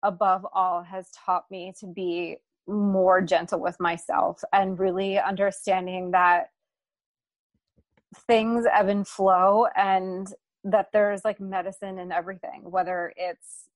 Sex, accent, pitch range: female, American, 185-215 Hz